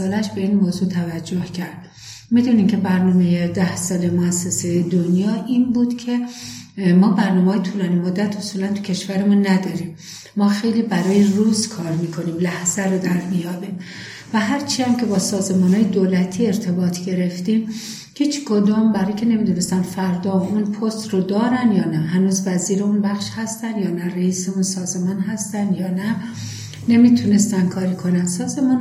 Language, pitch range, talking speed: Persian, 185-220 Hz, 155 wpm